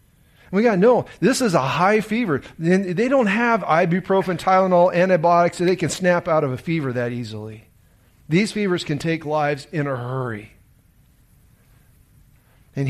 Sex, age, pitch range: male, 40-59, 145-215 Hz